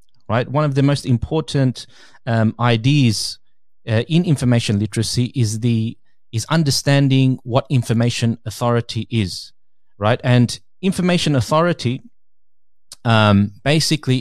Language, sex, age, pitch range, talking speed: English, male, 30-49, 120-155 Hz, 110 wpm